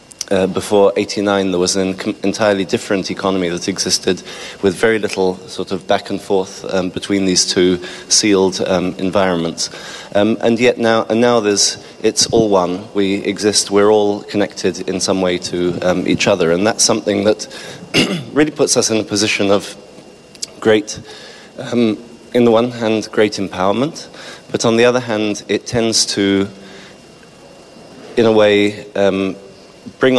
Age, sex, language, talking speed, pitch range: 30-49, male, English, 160 wpm, 95-110 Hz